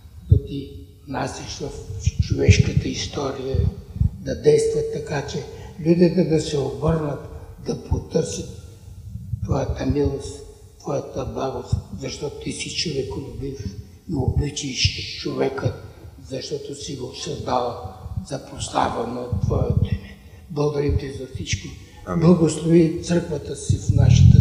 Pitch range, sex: 105-155 Hz, male